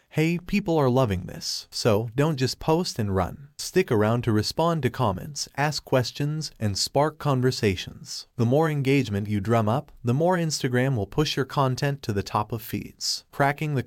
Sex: male